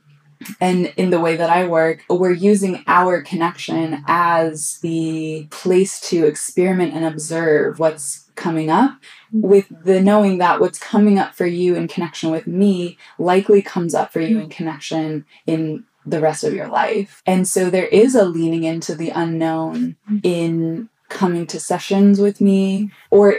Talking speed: 160 wpm